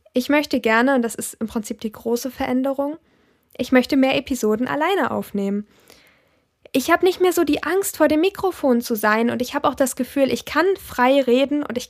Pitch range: 235-270 Hz